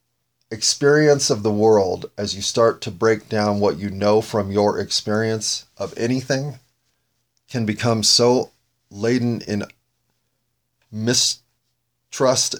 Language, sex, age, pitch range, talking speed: English, male, 40-59, 105-125 Hz, 115 wpm